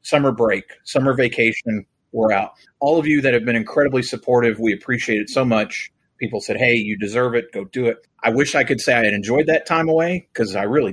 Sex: male